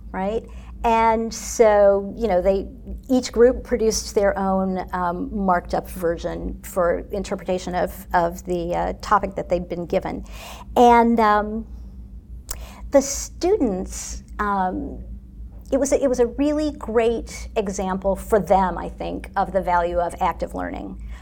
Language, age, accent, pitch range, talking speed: English, 50-69, American, 185-225 Hz, 140 wpm